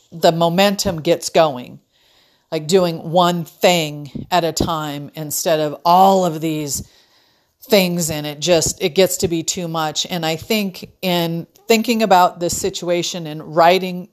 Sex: female